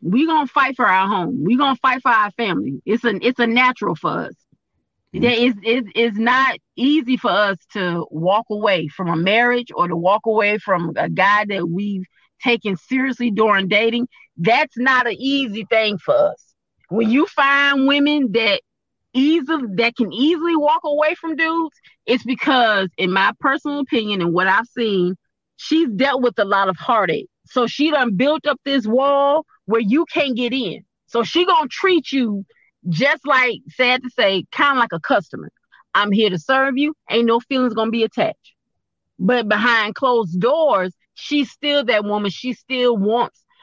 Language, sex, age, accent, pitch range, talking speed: English, female, 30-49, American, 210-285 Hz, 185 wpm